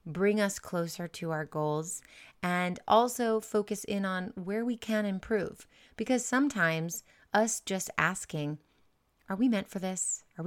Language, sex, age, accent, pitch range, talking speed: English, female, 30-49, American, 165-210 Hz, 150 wpm